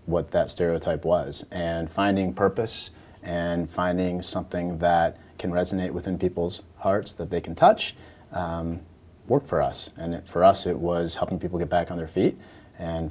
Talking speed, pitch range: 170 wpm, 85-95 Hz